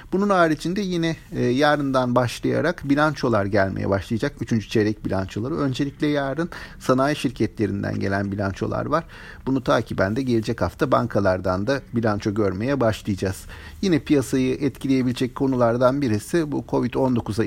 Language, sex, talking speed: Turkish, male, 120 wpm